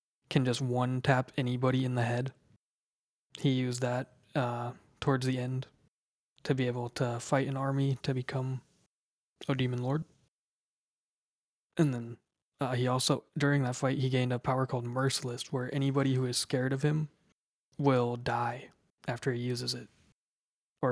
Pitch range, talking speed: 125-140 Hz, 155 wpm